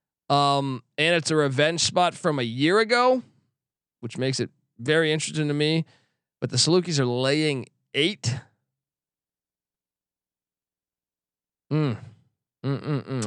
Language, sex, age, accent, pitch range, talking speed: English, male, 20-39, American, 115-175 Hz, 110 wpm